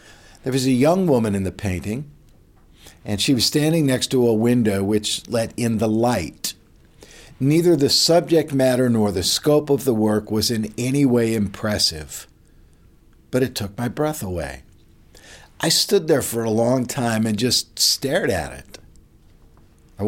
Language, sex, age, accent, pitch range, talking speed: English, male, 50-69, American, 100-130 Hz, 165 wpm